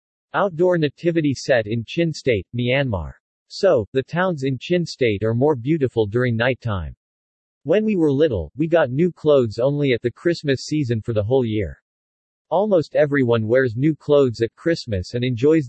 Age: 50-69